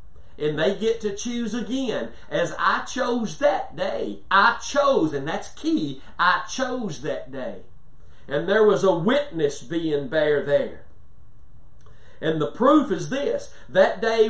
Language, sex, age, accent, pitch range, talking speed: English, male, 50-69, American, 185-240 Hz, 145 wpm